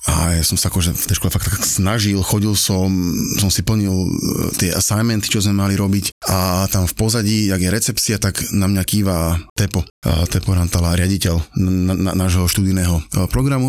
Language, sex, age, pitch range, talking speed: Slovak, male, 20-39, 95-135 Hz, 195 wpm